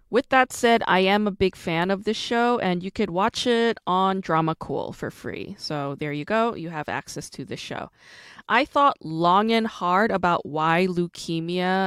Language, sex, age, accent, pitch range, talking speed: English, female, 20-39, American, 155-205 Hz, 195 wpm